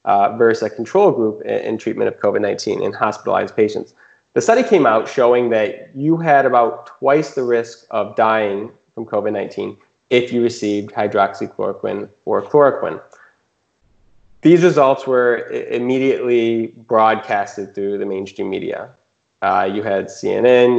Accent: American